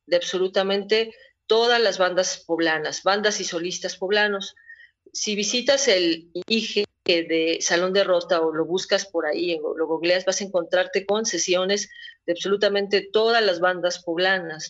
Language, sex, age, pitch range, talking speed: Spanish, female, 40-59, 175-220 Hz, 150 wpm